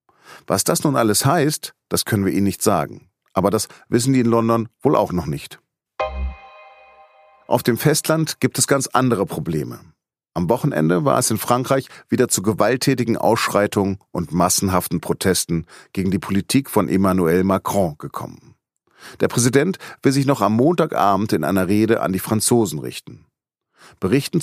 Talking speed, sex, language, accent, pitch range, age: 155 wpm, male, German, German, 95-125 Hz, 40-59